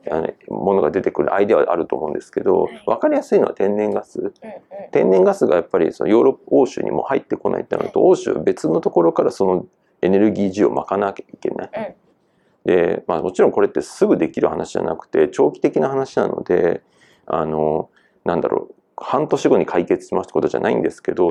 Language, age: Japanese, 40-59